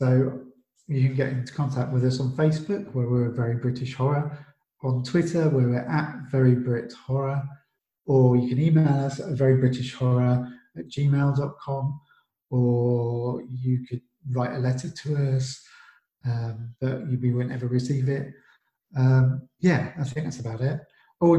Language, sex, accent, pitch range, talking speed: English, male, British, 125-140 Hz, 150 wpm